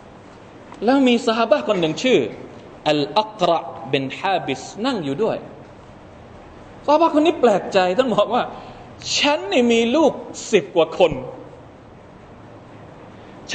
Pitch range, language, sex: 170-280 Hz, Thai, male